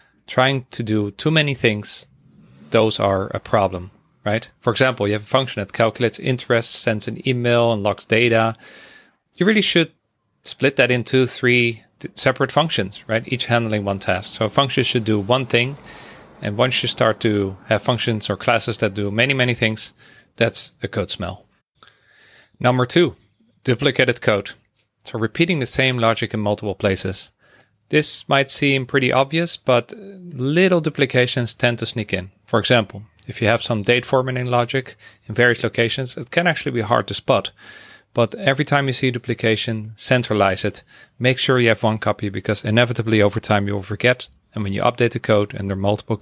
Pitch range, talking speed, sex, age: 105-130 Hz, 180 wpm, male, 30-49